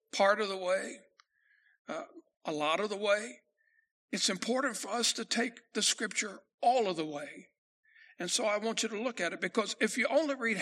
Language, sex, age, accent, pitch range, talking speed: English, male, 60-79, American, 195-255 Hz, 205 wpm